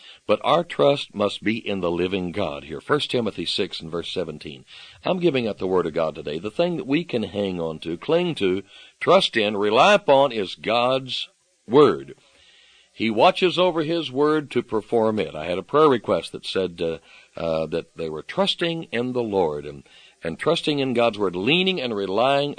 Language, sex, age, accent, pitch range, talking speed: English, male, 60-79, American, 95-155 Hz, 195 wpm